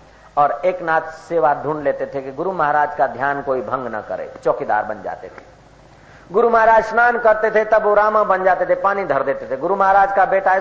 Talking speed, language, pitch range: 220 wpm, Hindi, 160-215 Hz